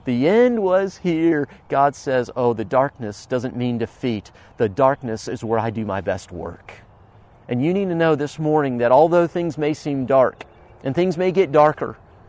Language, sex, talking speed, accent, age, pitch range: English, male, 190 wpm, American, 40-59, 115-160 Hz